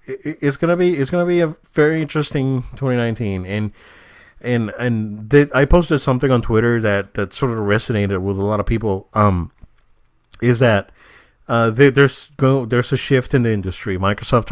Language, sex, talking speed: English, male, 180 wpm